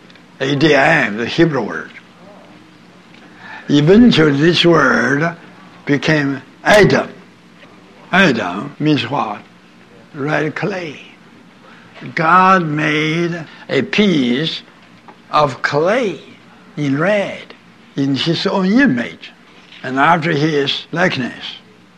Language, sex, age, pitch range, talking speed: English, male, 60-79, 145-185 Hz, 80 wpm